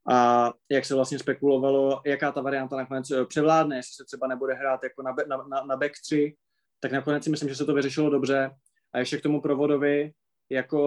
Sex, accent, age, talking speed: male, native, 20-39, 205 wpm